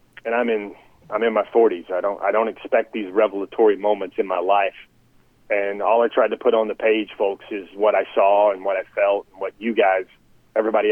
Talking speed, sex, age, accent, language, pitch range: 220 wpm, male, 30-49, American, English, 100-115 Hz